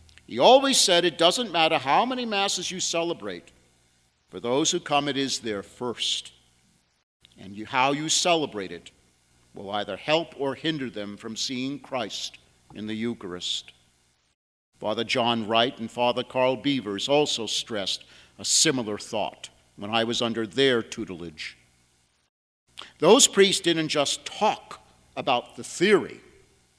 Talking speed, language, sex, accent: 140 wpm, English, male, American